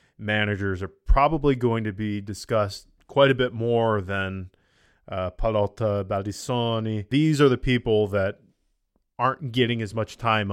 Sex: male